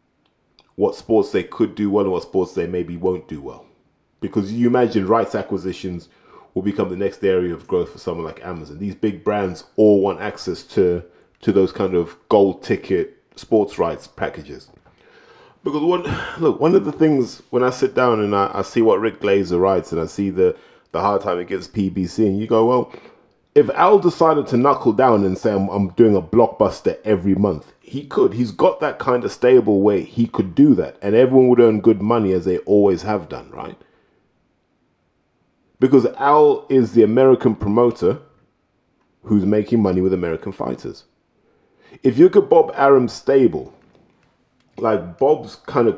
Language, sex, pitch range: English, male, 95-125 Hz